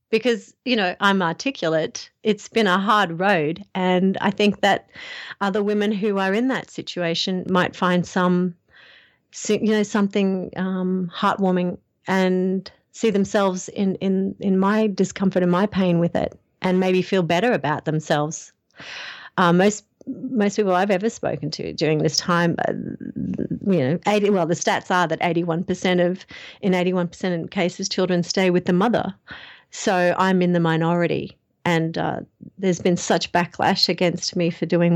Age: 40-59